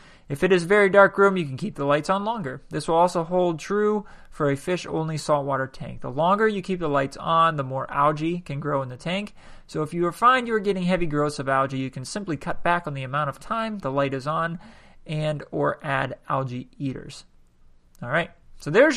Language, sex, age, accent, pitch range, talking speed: English, male, 20-39, American, 135-190 Hz, 230 wpm